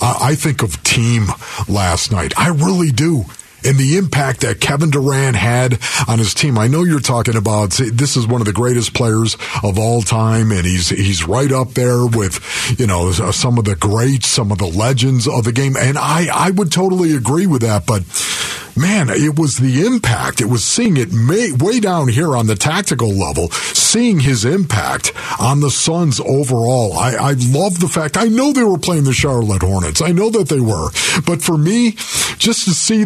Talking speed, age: 200 wpm, 50-69